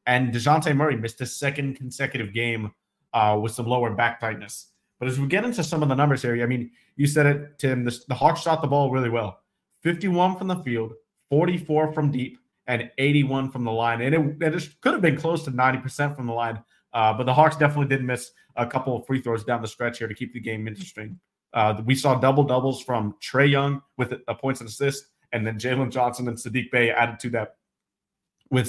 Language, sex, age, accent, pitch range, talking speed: English, male, 30-49, American, 120-150 Hz, 220 wpm